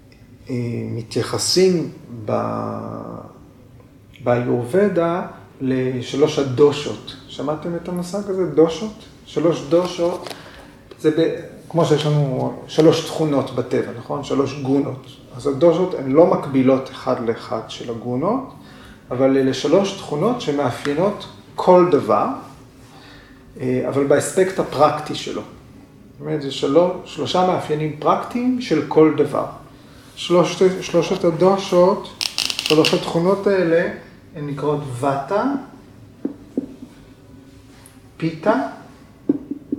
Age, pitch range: 40-59, 130-175 Hz